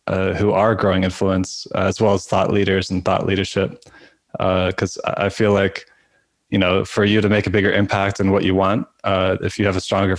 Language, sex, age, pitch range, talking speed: English, male, 20-39, 95-105 Hz, 225 wpm